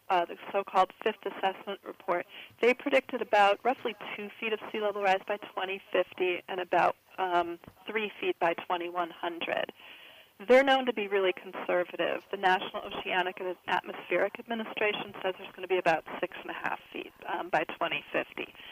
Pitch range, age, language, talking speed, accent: 180-220 Hz, 40-59, English, 165 wpm, American